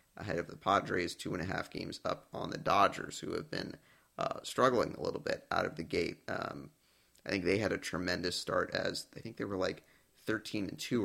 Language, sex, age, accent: English, male, 30-49, American